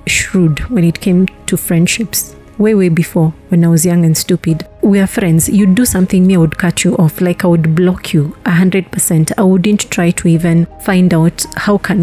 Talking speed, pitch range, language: 225 wpm, 170-205 Hz, English